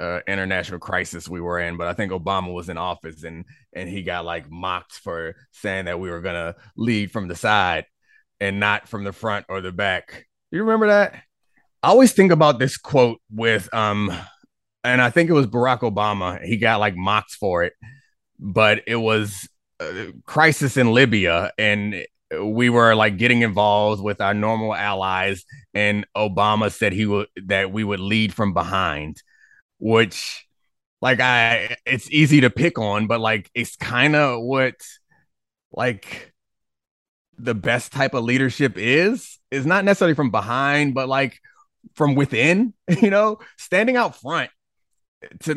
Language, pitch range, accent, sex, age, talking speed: English, 100-135 Hz, American, male, 30-49, 165 wpm